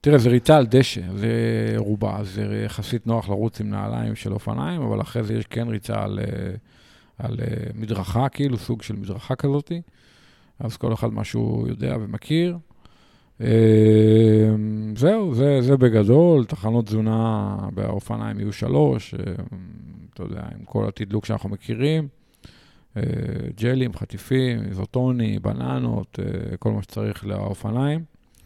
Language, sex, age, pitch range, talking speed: Hebrew, male, 50-69, 105-120 Hz, 125 wpm